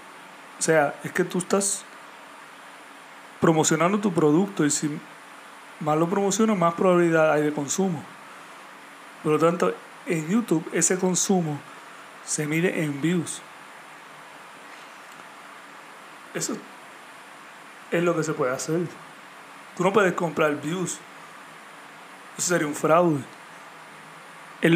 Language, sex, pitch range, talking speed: Spanish, male, 150-180 Hz, 115 wpm